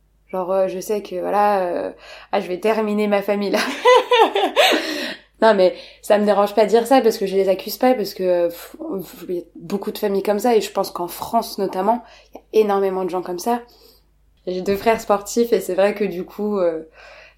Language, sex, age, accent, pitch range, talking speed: French, female, 20-39, French, 190-235 Hz, 230 wpm